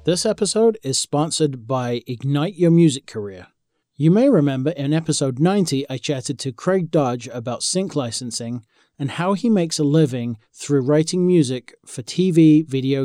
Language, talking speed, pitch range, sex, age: English, 160 wpm, 130-165 Hz, male, 40-59